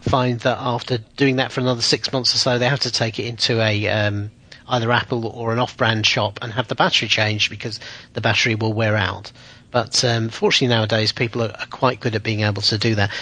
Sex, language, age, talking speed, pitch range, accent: male, English, 40-59, 225 wpm, 115-140 Hz, British